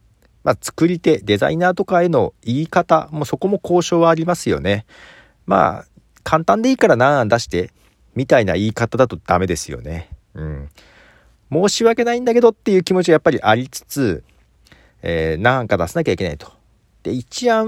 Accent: native